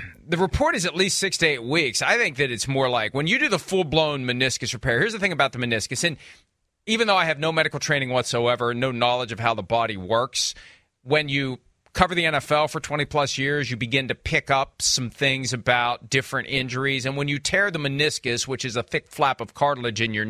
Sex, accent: male, American